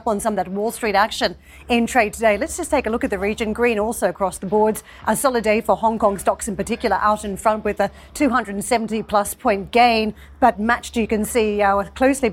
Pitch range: 205-235 Hz